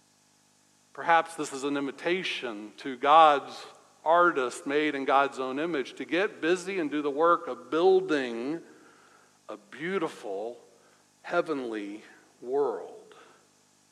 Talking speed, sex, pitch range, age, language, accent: 110 wpm, male, 150-200 Hz, 60-79, English, American